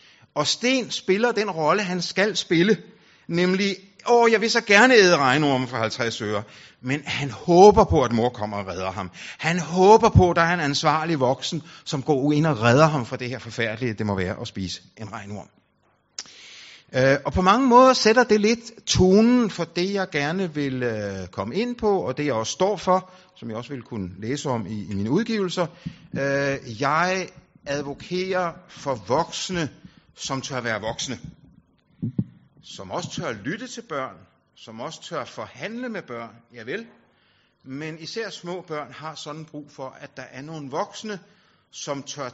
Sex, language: male, Danish